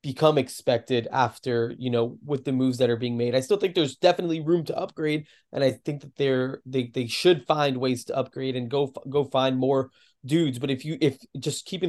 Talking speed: 220 wpm